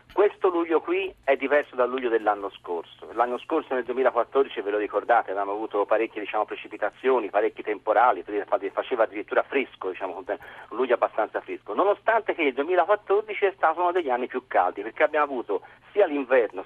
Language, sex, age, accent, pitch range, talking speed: Italian, male, 40-59, native, 120-190 Hz, 170 wpm